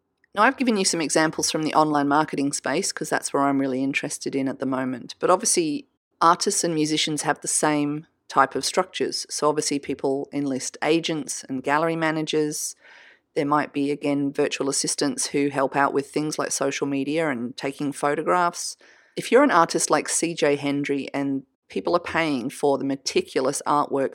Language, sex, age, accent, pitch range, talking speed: English, female, 30-49, Australian, 140-160 Hz, 180 wpm